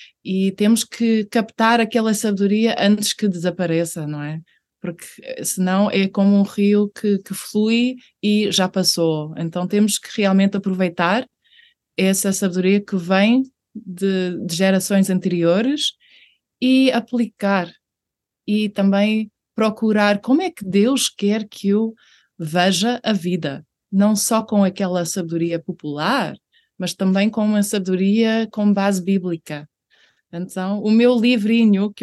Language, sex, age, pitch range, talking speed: Portuguese, female, 20-39, 185-225 Hz, 130 wpm